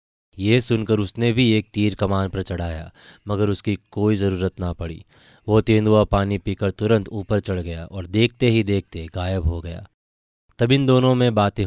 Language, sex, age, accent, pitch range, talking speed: Hindi, male, 20-39, native, 95-110 Hz, 180 wpm